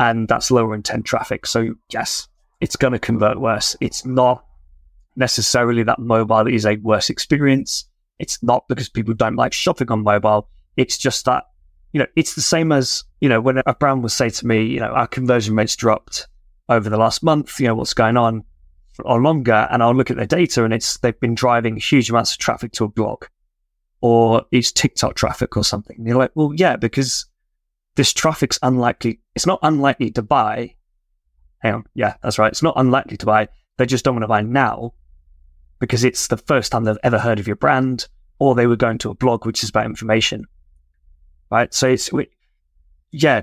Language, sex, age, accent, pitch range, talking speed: English, male, 20-39, British, 110-130 Hz, 205 wpm